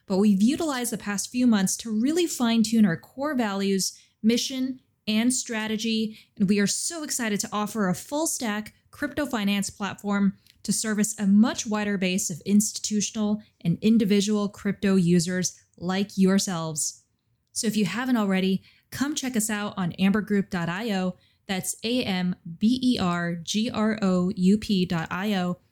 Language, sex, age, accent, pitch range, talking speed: English, female, 20-39, American, 190-230 Hz, 130 wpm